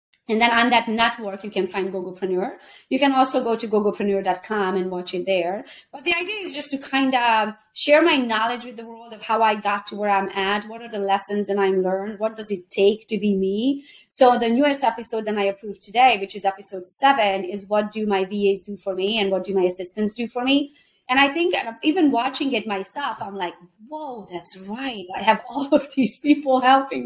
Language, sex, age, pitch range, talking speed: English, female, 30-49, 205-265 Hz, 225 wpm